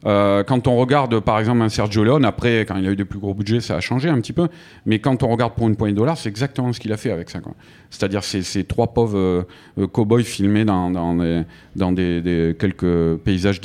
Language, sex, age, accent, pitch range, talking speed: French, male, 40-59, French, 100-125 Hz, 255 wpm